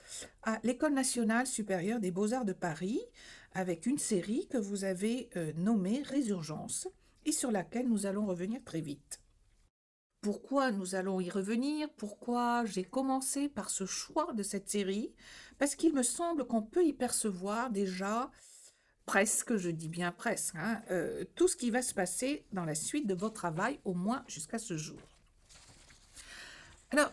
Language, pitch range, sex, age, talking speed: French, 185-255 Hz, female, 60-79, 160 wpm